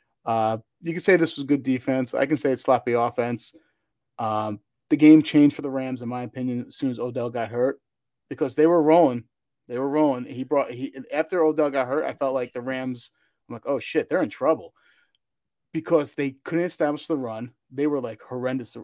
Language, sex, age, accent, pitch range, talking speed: English, male, 30-49, American, 120-155 Hz, 210 wpm